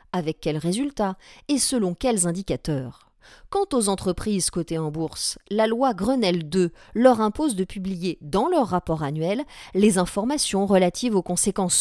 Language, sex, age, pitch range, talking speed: French, female, 40-59, 165-235 Hz, 150 wpm